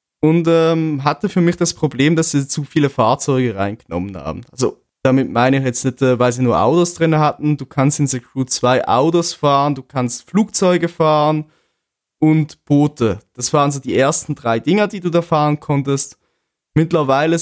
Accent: German